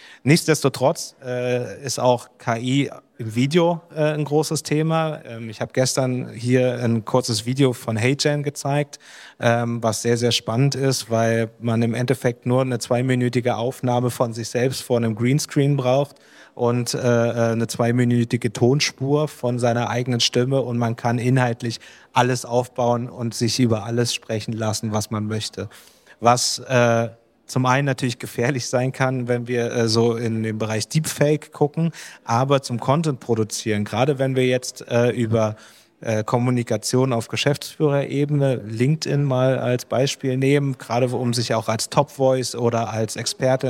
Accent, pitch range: German, 120-135 Hz